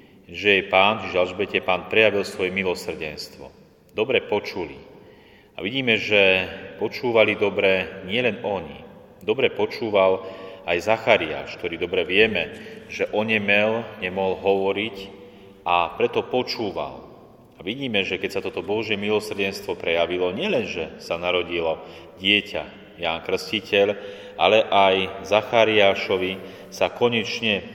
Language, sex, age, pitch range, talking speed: Slovak, male, 30-49, 95-105 Hz, 115 wpm